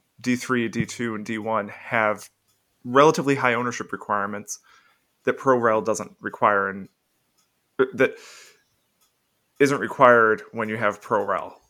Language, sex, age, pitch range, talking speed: English, male, 20-39, 105-130 Hz, 110 wpm